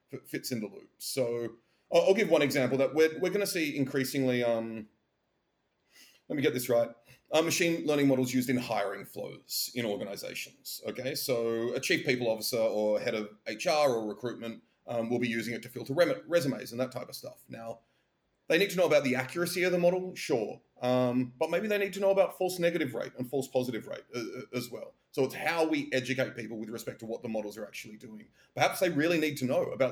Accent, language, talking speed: Australian, English, 215 wpm